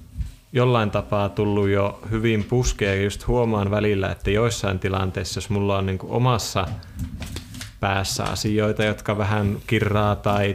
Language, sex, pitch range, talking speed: Finnish, male, 95-110 Hz, 135 wpm